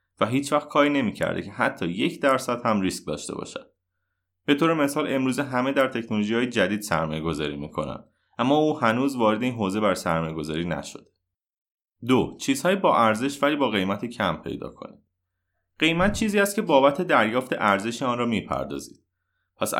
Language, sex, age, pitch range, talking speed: Persian, male, 30-49, 90-130 Hz, 160 wpm